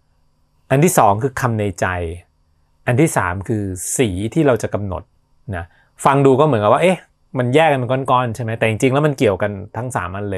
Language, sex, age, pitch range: Thai, male, 20-39, 105-145 Hz